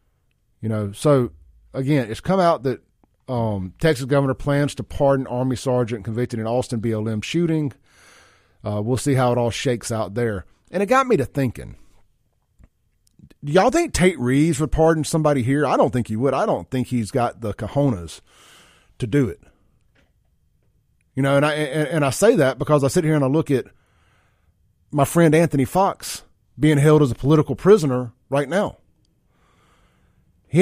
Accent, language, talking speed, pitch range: American, English, 175 wpm, 105-150 Hz